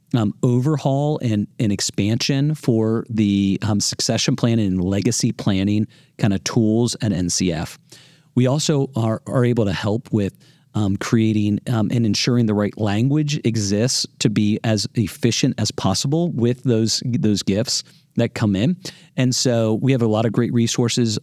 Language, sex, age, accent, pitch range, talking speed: English, male, 40-59, American, 105-135 Hz, 160 wpm